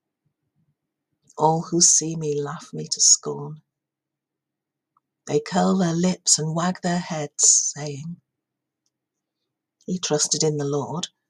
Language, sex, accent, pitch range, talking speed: English, female, British, 155-180 Hz, 115 wpm